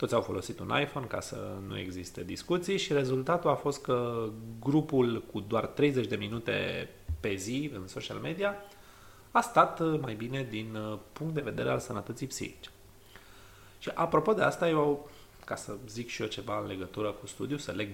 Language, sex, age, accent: Romanian, male, 30-49, native